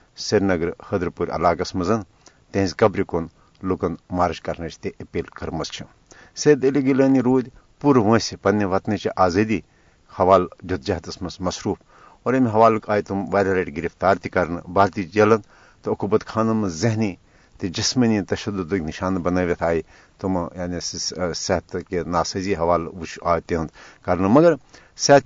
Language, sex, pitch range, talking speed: Urdu, male, 90-120 Hz, 140 wpm